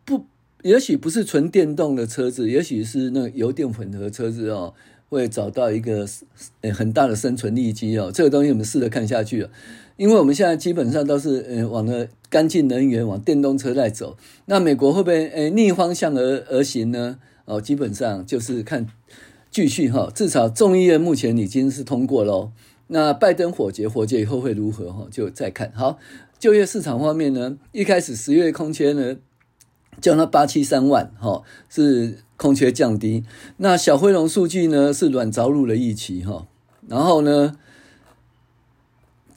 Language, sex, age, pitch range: Chinese, male, 50-69, 115-160 Hz